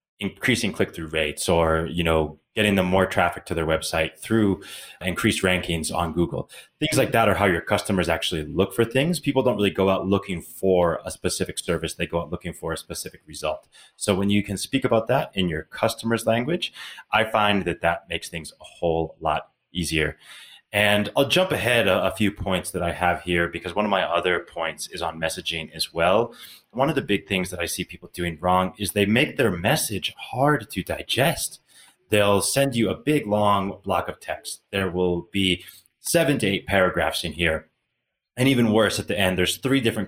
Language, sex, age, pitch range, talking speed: English, male, 30-49, 85-110 Hz, 205 wpm